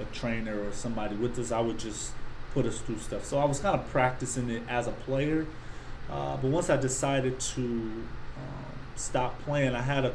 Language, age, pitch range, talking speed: English, 30-49, 115-125 Hz, 205 wpm